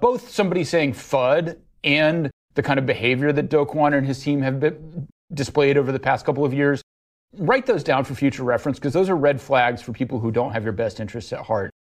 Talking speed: 215 wpm